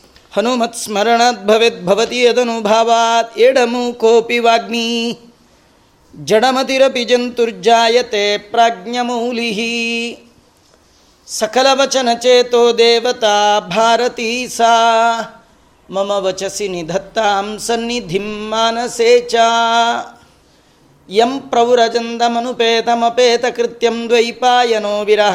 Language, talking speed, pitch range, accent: Kannada, 30 wpm, 210-240 Hz, native